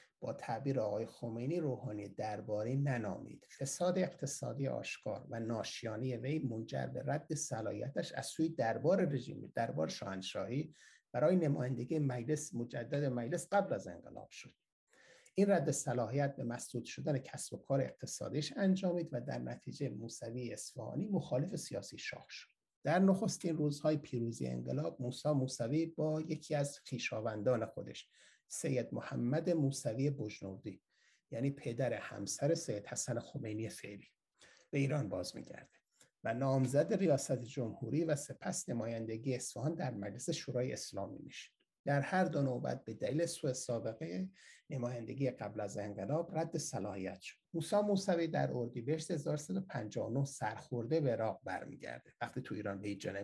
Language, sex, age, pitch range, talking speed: Persian, male, 60-79, 115-155 Hz, 135 wpm